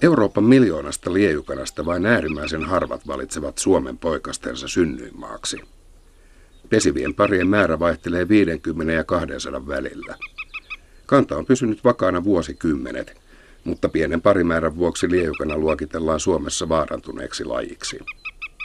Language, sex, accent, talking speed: Finnish, male, native, 105 wpm